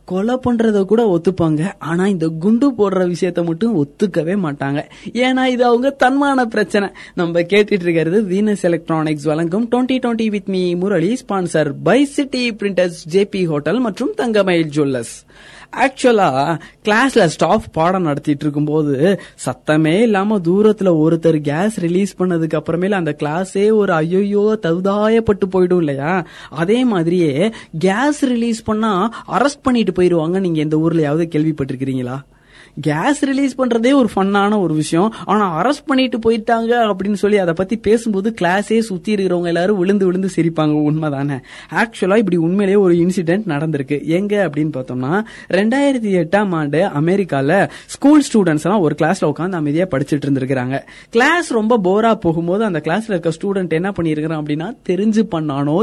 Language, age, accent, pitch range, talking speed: Tamil, 20-39, native, 160-215 Hz, 125 wpm